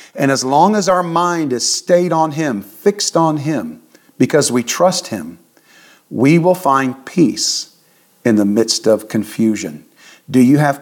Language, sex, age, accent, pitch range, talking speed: English, male, 50-69, American, 130-165 Hz, 160 wpm